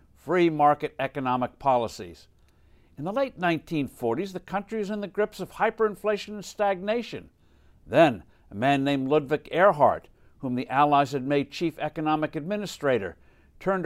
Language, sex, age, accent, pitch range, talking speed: English, male, 60-79, American, 135-190 Hz, 145 wpm